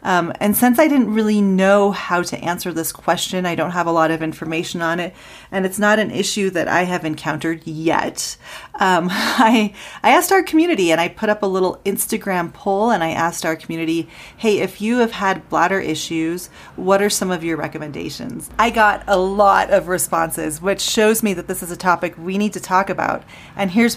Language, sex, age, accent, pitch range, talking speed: English, female, 30-49, American, 165-200 Hz, 210 wpm